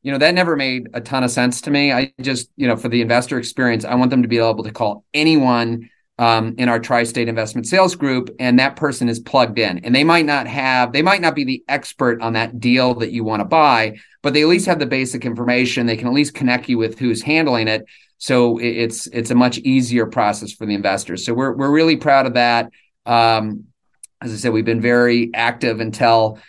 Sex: male